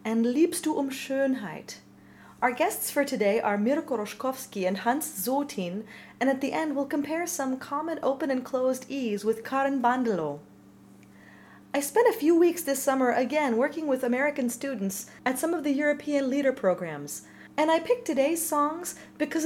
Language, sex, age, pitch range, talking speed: English, female, 30-49, 230-290 Hz, 170 wpm